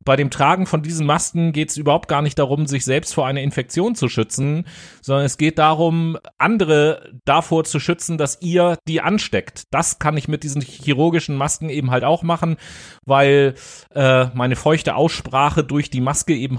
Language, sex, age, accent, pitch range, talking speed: German, male, 30-49, German, 130-160 Hz, 185 wpm